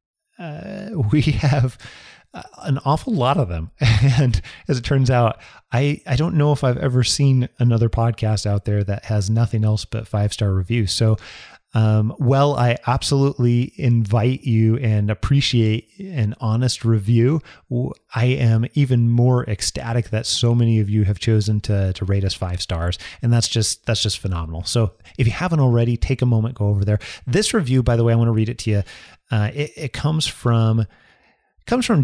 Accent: American